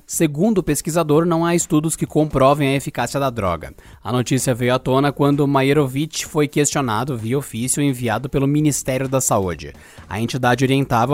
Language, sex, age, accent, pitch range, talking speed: Portuguese, male, 20-39, Brazilian, 130-165 Hz, 165 wpm